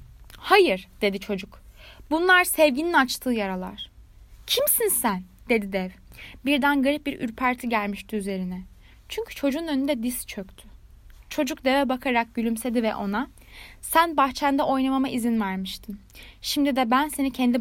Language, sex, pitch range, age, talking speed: Turkish, female, 210-285 Hz, 10-29, 130 wpm